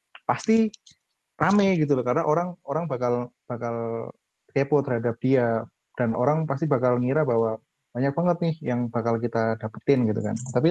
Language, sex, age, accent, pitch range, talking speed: Indonesian, male, 20-39, native, 115-140 Hz, 150 wpm